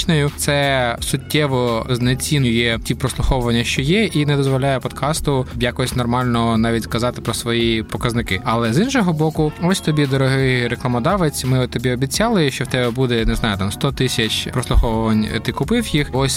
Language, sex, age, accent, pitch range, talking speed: Ukrainian, male, 20-39, native, 120-145 Hz, 160 wpm